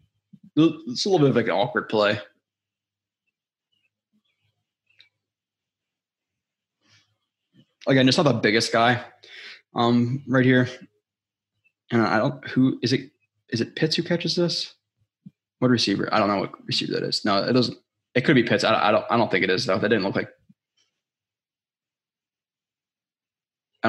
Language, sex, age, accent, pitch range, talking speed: English, male, 20-39, American, 110-125 Hz, 150 wpm